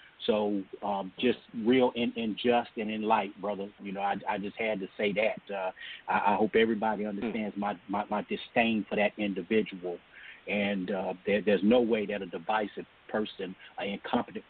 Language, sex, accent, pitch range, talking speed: English, male, American, 100-115 Hz, 180 wpm